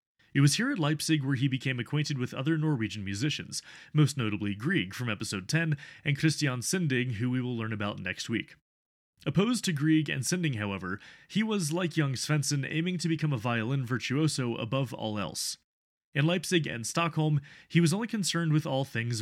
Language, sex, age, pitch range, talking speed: English, male, 30-49, 120-165 Hz, 185 wpm